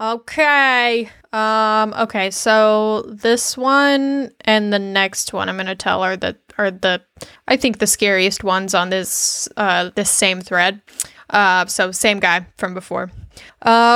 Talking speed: 155 wpm